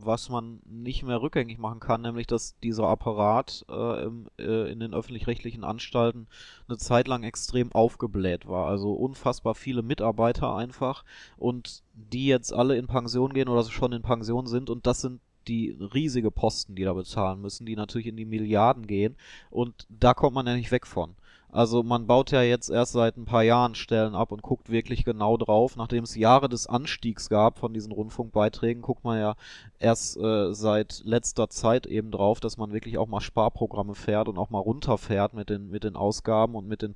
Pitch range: 110-130 Hz